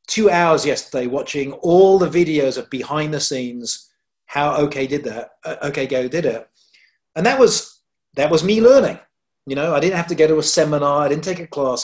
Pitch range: 135-175 Hz